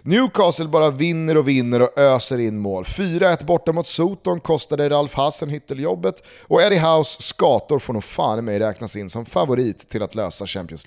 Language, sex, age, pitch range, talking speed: Swedish, male, 30-49, 115-165 Hz, 180 wpm